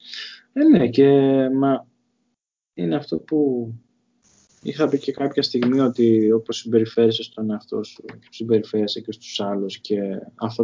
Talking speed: 135 wpm